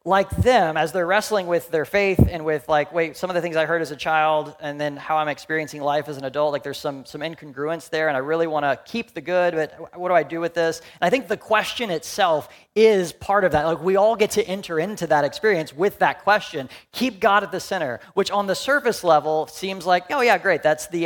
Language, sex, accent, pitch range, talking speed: English, male, American, 125-170 Hz, 255 wpm